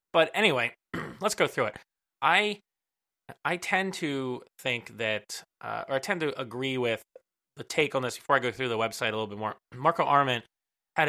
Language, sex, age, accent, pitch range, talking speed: English, male, 20-39, American, 115-140 Hz, 195 wpm